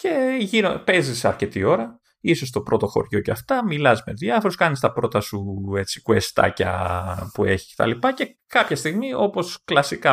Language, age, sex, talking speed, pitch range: Greek, 30-49, male, 155 wpm, 110-180 Hz